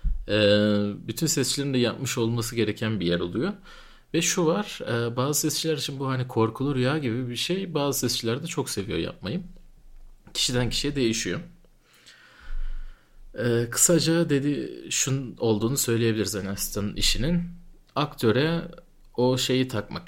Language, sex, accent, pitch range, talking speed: Turkish, male, native, 105-145 Hz, 125 wpm